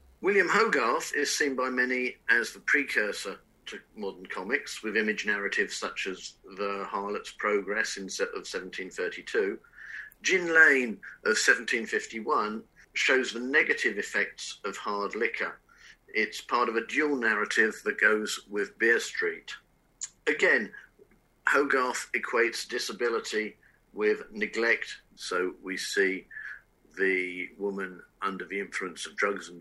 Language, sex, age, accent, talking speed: English, male, 50-69, British, 125 wpm